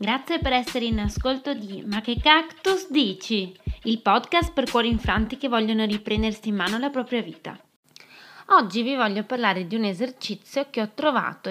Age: 20-39